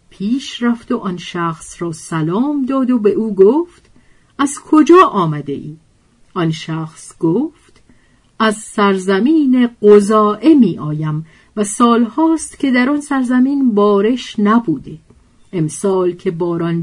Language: Persian